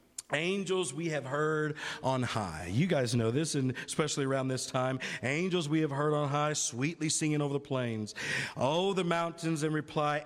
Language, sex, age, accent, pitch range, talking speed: English, male, 50-69, American, 140-195 Hz, 180 wpm